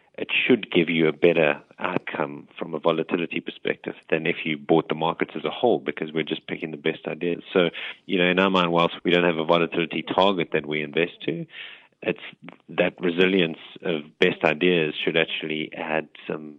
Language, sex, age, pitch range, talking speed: English, male, 30-49, 80-85 Hz, 195 wpm